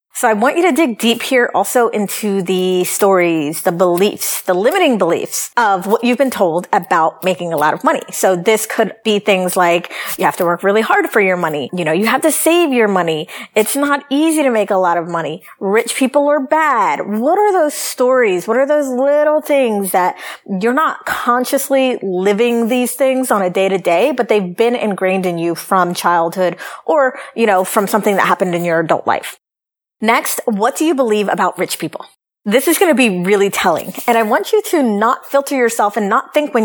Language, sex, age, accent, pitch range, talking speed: English, female, 30-49, American, 190-270 Hz, 215 wpm